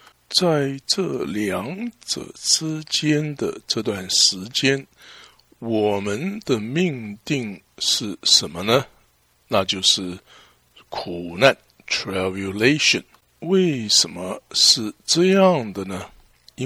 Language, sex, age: English, male, 60-79